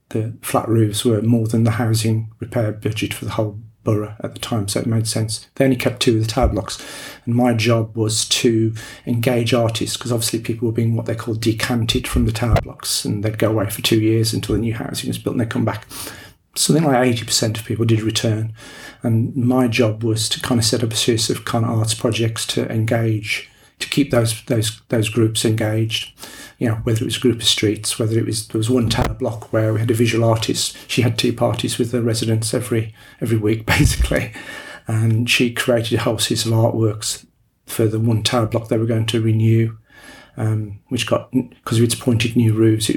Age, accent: 40-59, British